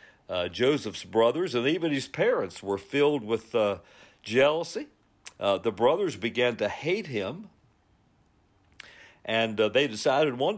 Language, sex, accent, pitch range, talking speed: English, male, American, 105-135 Hz, 135 wpm